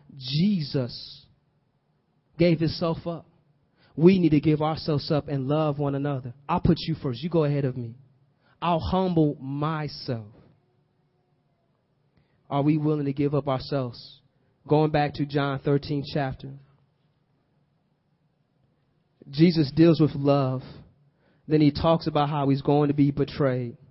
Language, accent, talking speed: English, American, 135 wpm